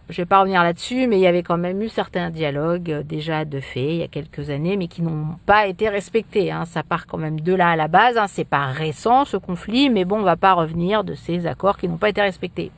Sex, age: female, 50-69